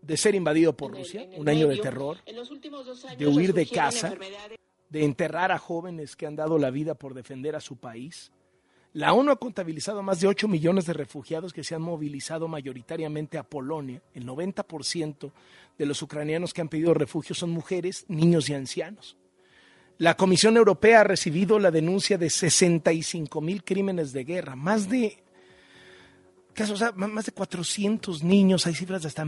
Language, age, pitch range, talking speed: Spanish, 40-59, 145-195 Hz, 170 wpm